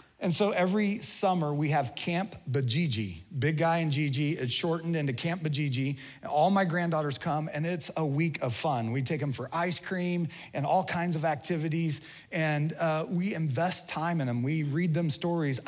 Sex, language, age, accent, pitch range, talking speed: male, English, 30-49, American, 140-180 Hz, 190 wpm